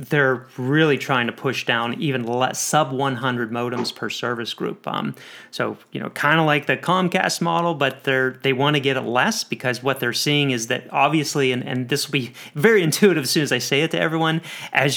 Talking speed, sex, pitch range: 220 wpm, male, 125-145 Hz